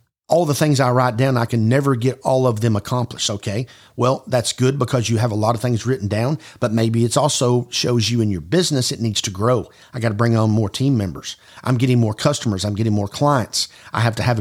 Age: 50-69